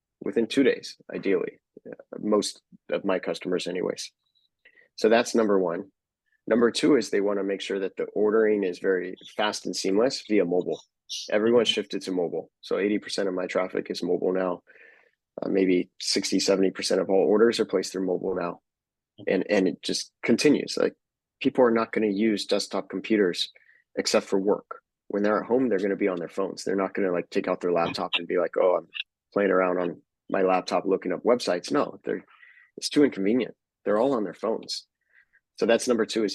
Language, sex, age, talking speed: English, male, 30-49, 195 wpm